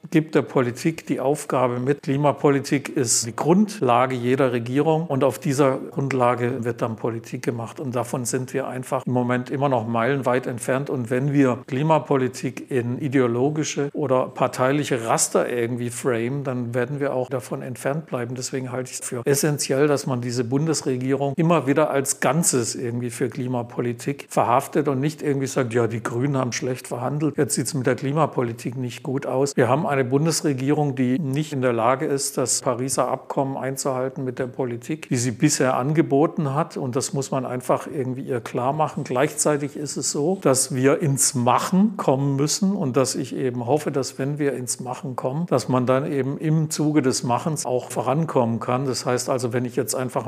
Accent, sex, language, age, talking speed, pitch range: German, male, German, 50-69, 185 wpm, 125-145 Hz